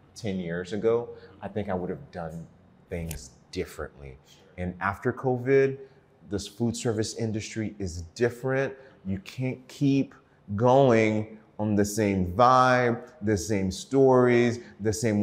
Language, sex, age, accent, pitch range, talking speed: English, male, 30-49, American, 90-125 Hz, 130 wpm